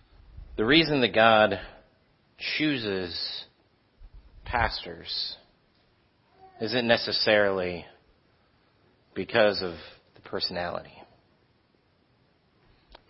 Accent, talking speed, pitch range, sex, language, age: American, 60 wpm, 100-125 Hz, male, English, 40-59